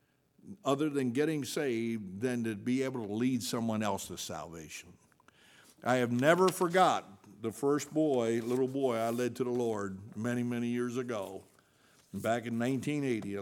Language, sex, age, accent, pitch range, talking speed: English, male, 60-79, American, 120-155 Hz, 155 wpm